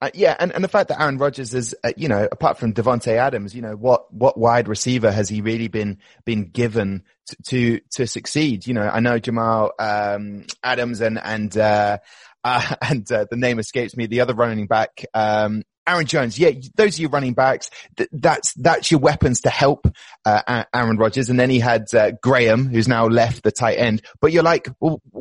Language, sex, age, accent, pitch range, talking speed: English, male, 20-39, British, 110-135 Hz, 210 wpm